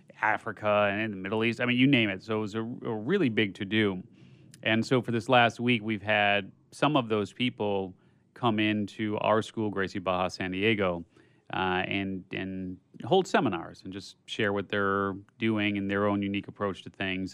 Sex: male